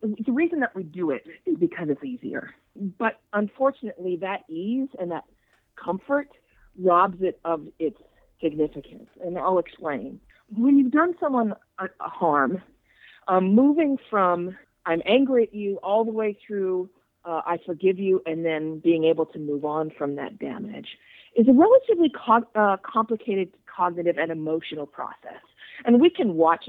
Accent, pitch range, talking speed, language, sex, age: American, 170-240 Hz, 155 wpm, English, female, 40-59